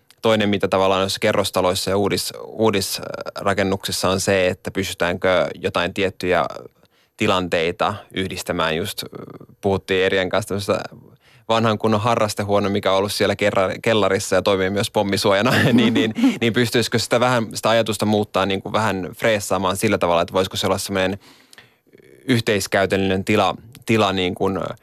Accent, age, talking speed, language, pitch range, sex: native, 20-39, 135 wpm, Finnish, 95-110 Hz, male